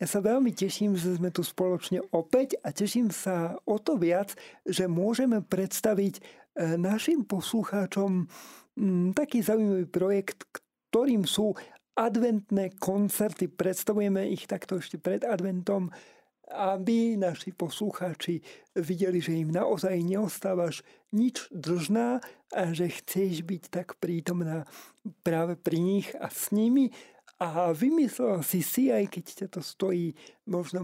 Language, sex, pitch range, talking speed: Slovak, male, 180-215 Hz, 125 wpm